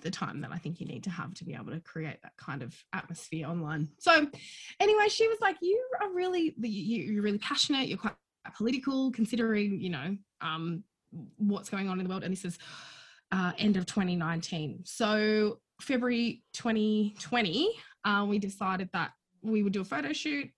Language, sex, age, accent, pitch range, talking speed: English, female, 20-39, Australian, 185-230 Hz, 185 wpm